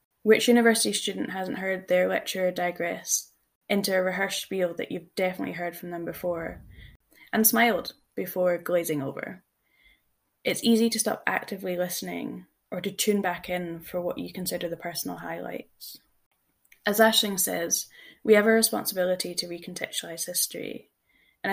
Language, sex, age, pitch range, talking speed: English, female, 10-29, 175-205 Hz, 150 wpm